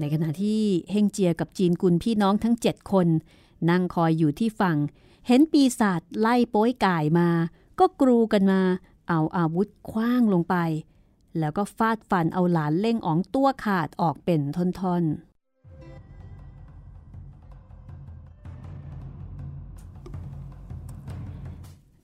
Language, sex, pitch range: Thai, female, 155-205 Hz